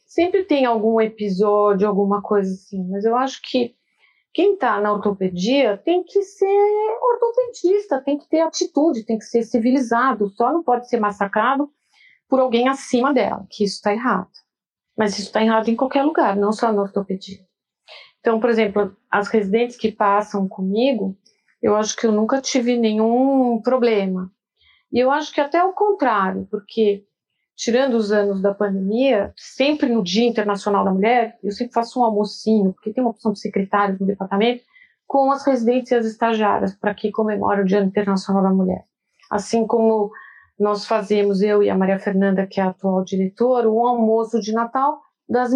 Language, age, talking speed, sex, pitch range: Portuguese, 40-59, 170 wpm, female, 205-265 Hz